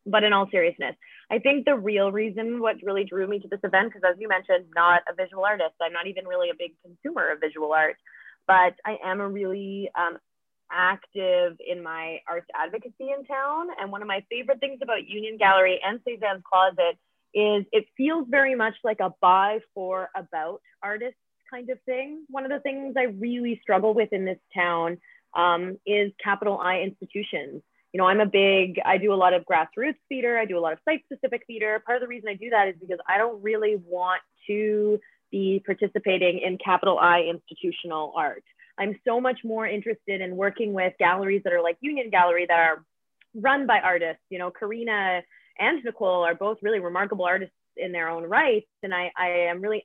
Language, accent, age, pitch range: English, American, 20-39, 180-230 Hz